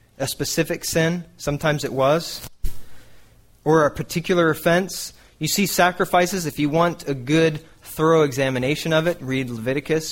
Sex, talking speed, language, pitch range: male, 140 wpm, English, 130-175 Hz